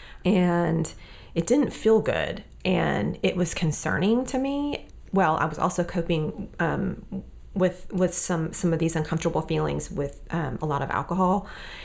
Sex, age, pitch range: female, 30-49, 165-190 Hz